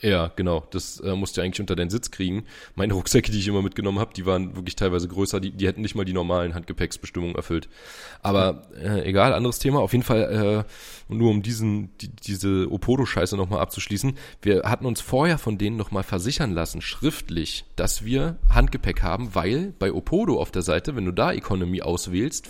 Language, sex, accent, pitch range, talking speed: German, male, German, 90-115 Hz, 200 wpm